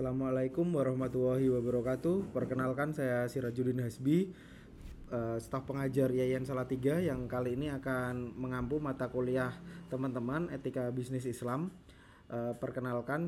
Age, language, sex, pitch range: 20-39, Indonesian, male, 120-135 Hz